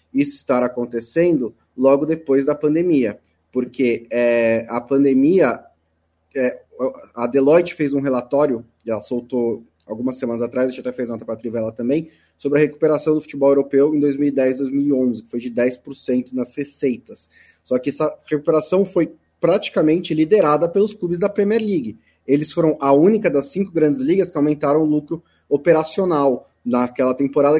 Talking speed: 155 wpm